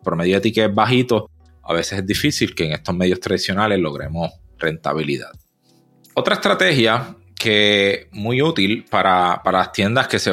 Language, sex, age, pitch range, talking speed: Spanish, male, 30-49, 95-120 Hz, 165 wpm